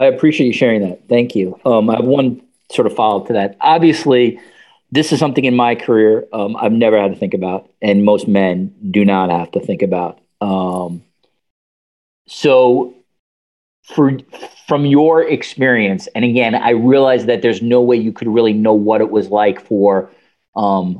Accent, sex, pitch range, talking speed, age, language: American, male, 100-125 Hz, 175 wpm, 40-59, English